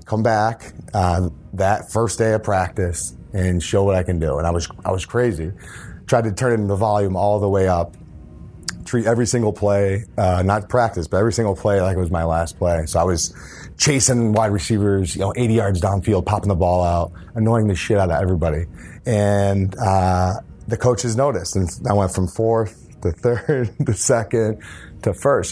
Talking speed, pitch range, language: 195 wpm, 90-110 Hz, English